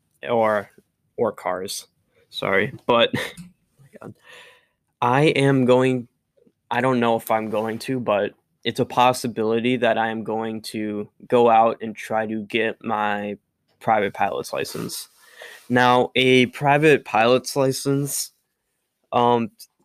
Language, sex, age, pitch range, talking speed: English, male, 10-29, 110-125 Hz, 130 wpm